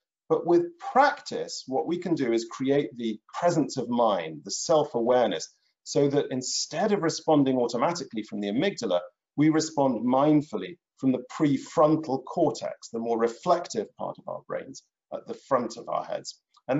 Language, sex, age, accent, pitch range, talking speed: English, male, 40-59, British, 120-170 Hz, 160 wpm